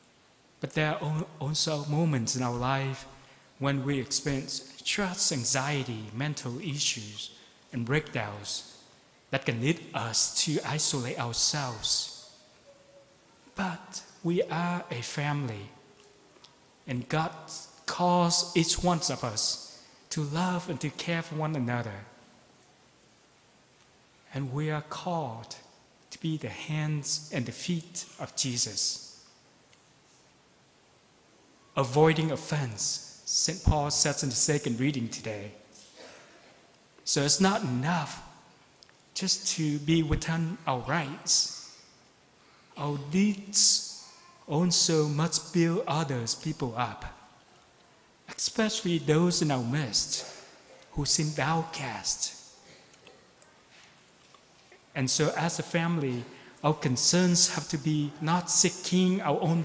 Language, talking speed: English, 110 wpm